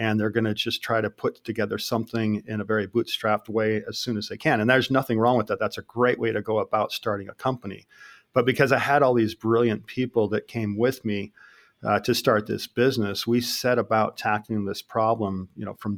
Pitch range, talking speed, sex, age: 105-120 Hz, 230 wpm, male, 40-59